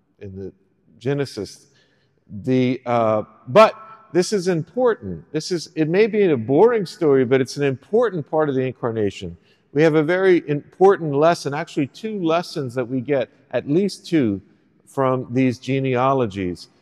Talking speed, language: 155 wpm, English